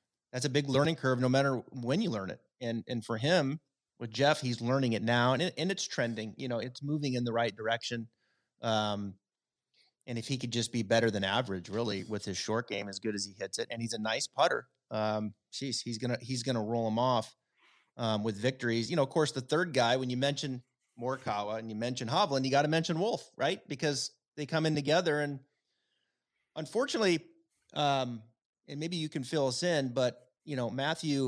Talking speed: 215 wpm